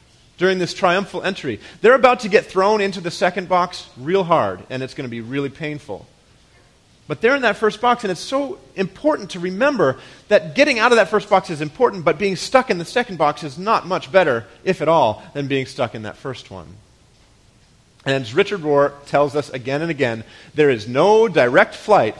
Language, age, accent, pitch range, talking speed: English, 40-59, American, 135-185 Hz, 210 wpm